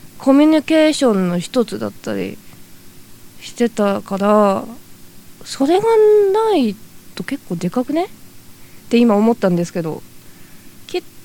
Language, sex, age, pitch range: Japanese, female, 20-39, 160-265 Hz